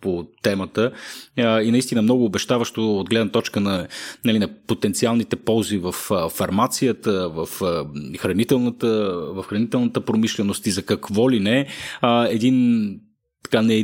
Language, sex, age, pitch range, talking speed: Bulgarian, male, 30-49, 100-120 Hz, 140 wpm